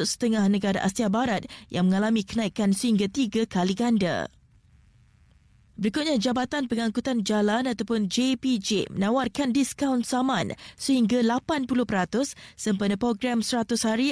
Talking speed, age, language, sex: 110 wpm, 20-39, Malay, female